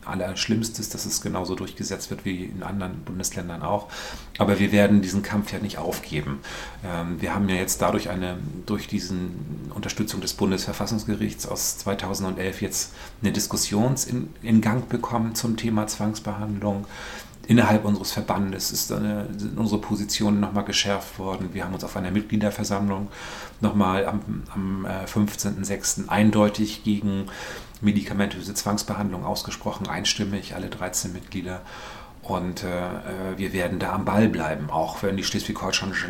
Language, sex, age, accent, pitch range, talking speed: German, male, 40-59, German, 95-105 Hz, 140 wpm